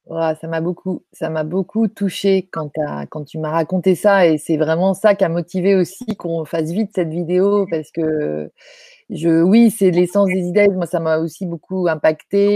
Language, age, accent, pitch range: French, 30-49, French, 170-210 Hz